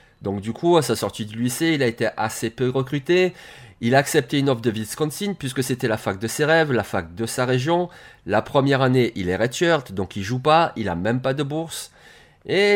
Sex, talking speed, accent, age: male, 235 wpm, French, 30-49